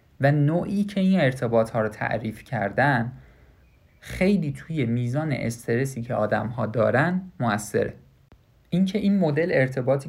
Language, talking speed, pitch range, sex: Persian, 130 wpm, 115-160 Hz, male